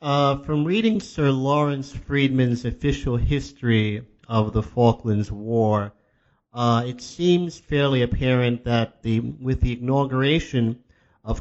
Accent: American